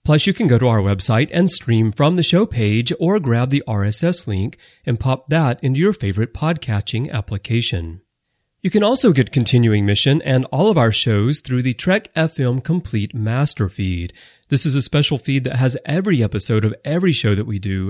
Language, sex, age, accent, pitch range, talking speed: English, male, 30-49, American, 105-150 Hz, 200 wpm